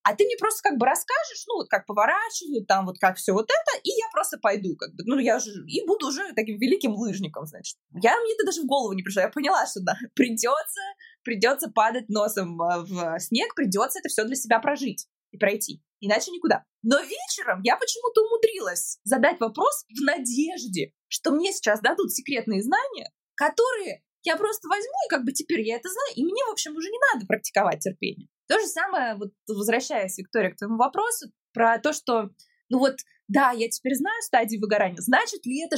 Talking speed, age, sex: 200 wpm, 20-39, female